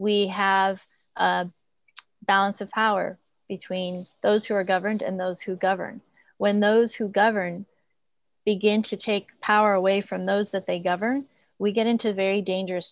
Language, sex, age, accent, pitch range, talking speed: English, female, 30-49, American, 185-220 Hz, 160 wpm